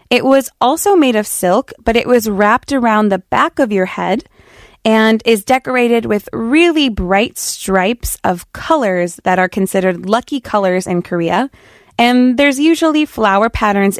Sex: female